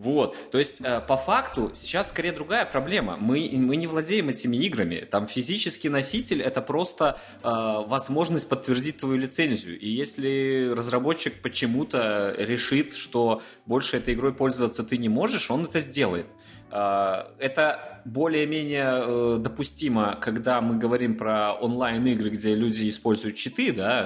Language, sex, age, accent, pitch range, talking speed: Russian, male, 20-39, native, 105-130 Hz, 145 wpm